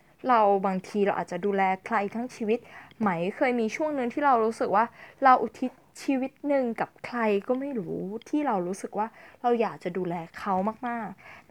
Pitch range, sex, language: 210-280 Hz, female, Thai